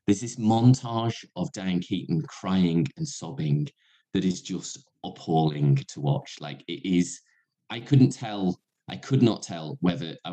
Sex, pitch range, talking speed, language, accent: male, 90-150 Hz, 155 wpm, English, British